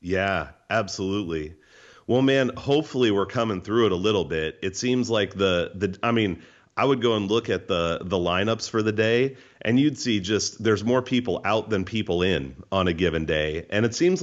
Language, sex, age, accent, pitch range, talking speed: English, male, 40-59, American, 95-125 Hz, 205 wpm